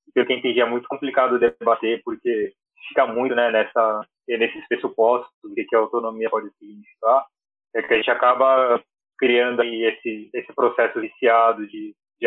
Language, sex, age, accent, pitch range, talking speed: Portuguese, male, 20-39, Brazilian, 115-150 Hz, 170 wpm